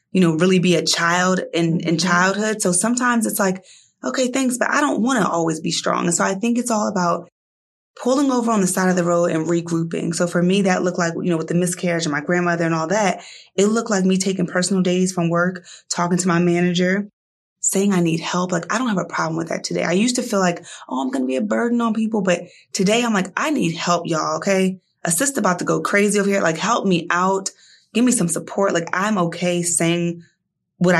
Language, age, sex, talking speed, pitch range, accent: English, 20-39, female, 245 wpm, 170-200 Hz, American